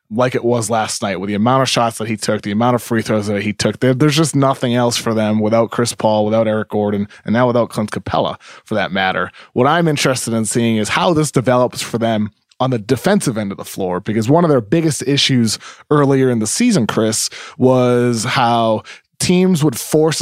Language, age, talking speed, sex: English, 20-39, 225 wpm, male